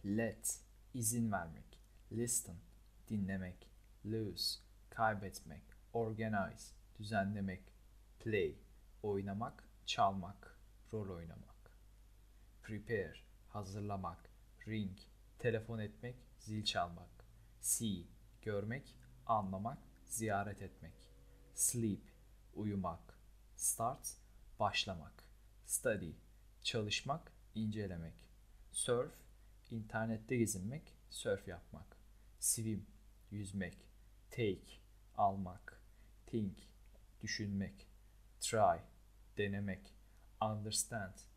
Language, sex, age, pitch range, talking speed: Turkish, male, 40-59, 100-110 Hz, 70 wpm